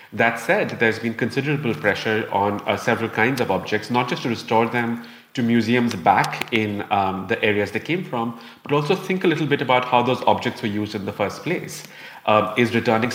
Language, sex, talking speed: English, male, 210 wpm